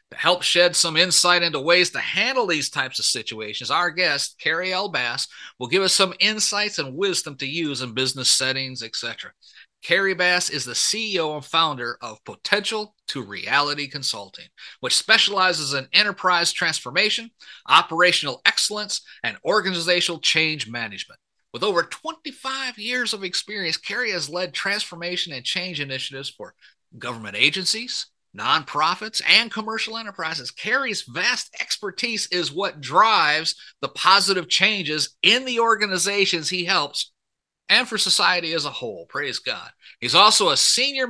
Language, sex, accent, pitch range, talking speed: English, male, American, 140-205 Hz, 145 wpm